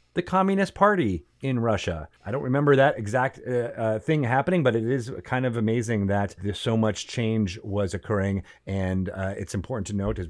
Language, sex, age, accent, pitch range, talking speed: English, male, 30-49, American, 95-135 Hz, 200 wpm